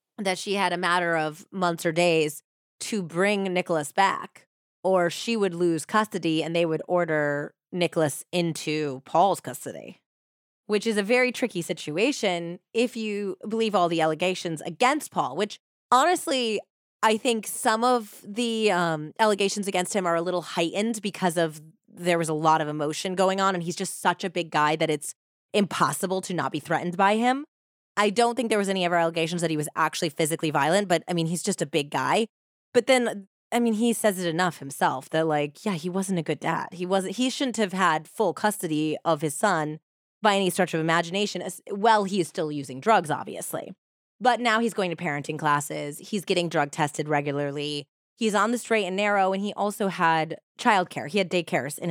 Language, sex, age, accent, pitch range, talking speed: English, female, 20-39, American, 160-205 Hz, 195 wpm